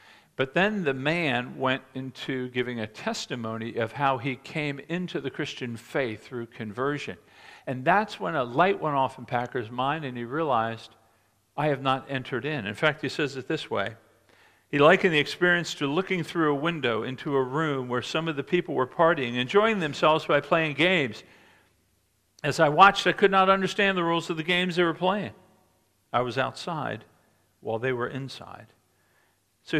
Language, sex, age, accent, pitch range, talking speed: English, male, 50-69, American, 120-170 Hz, 185 wpm